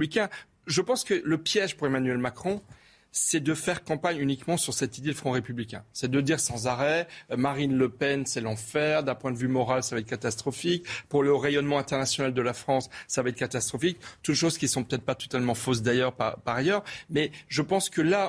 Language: French